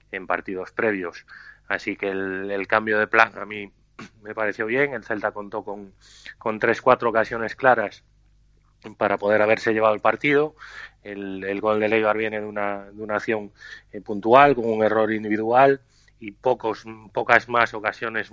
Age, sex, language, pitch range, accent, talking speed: 30-49, male, Spanish, 95-110 Hz, Spanish, 165 wpm